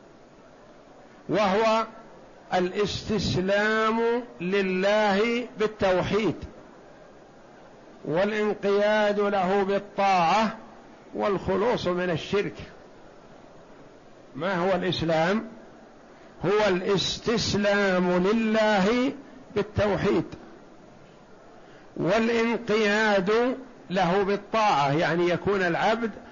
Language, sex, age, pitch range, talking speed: Arabic, male, 50-69, 180-210 Hz, 50 wpm